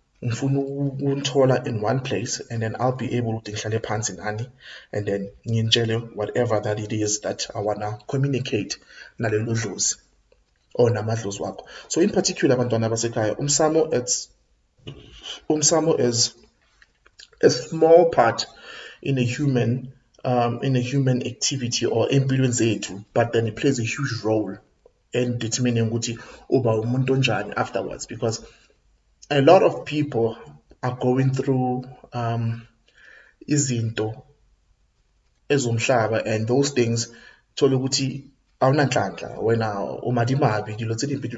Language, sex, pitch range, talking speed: English, male, 110-135 Hz, 115 wpm